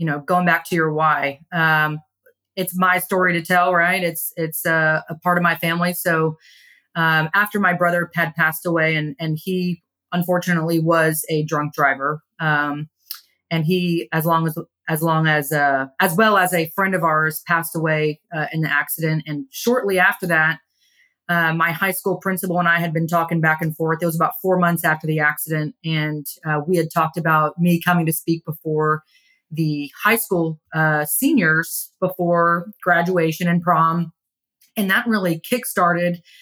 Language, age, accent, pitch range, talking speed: English, 30-49, American, 160-180 Hz, 180 wpm